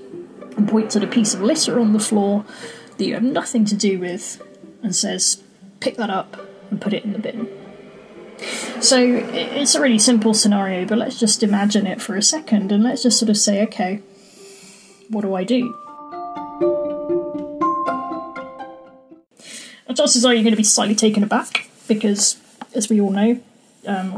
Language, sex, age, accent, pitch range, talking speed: English, female, 20-39, British, 200-245 Hz, 170 wpm